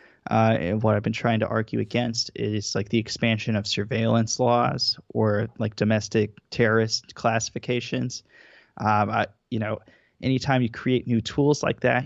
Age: 20-39